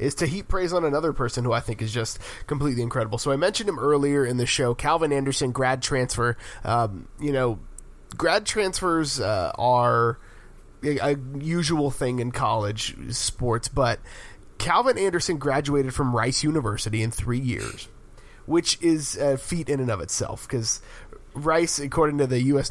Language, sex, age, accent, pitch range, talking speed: English, male, 20-39, American, 120-150 Hz, 165 wpm